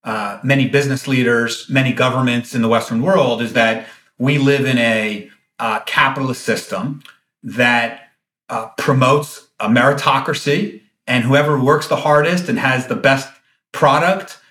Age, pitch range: 40-59, 120-145 Hz